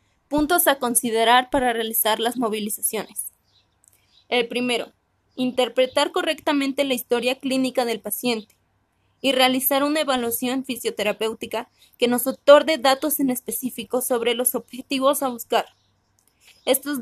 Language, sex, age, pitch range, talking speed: Spanish, female, 20-39, 230-270 Hz, 115 wpm